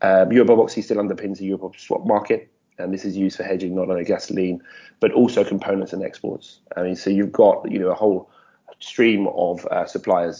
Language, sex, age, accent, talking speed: English, male, 20-39, British, 200 wpm